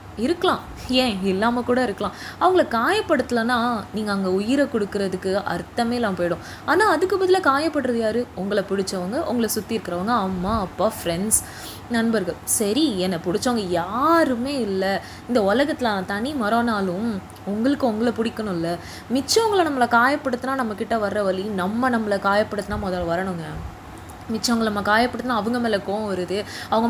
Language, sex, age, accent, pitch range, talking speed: Tamil, female, 20-39, native, 200-270 Hz, 130 wpm